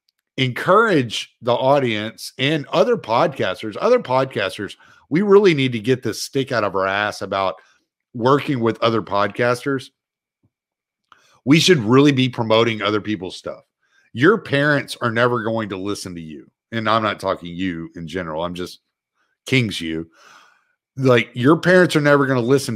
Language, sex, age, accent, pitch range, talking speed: English, male, 50-69, American, 105-145 Hz, 160 wpm